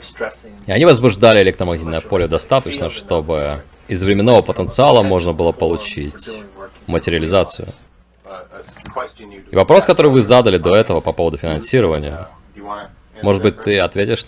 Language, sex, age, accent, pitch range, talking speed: Russian, male, 30-49, native, 85-125 Hz, 120 wpm